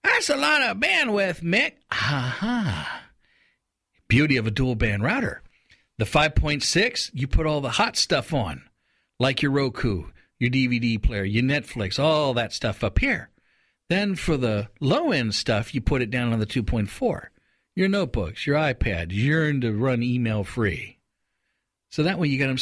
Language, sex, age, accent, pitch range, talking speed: English, male, 50-69, American, 110-155 Hz, 165 wpm